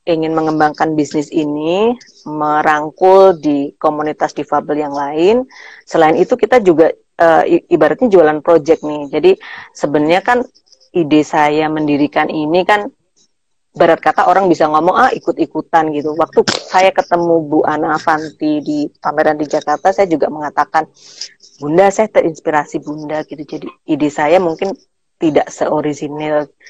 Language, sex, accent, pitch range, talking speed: Indonesian, female, native, 150-185 Hz, 135 wpm